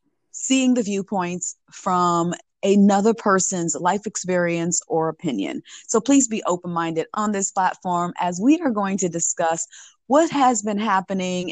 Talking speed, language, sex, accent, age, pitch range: 140 wpm, English, female, American, 30-49, 170-215 Hz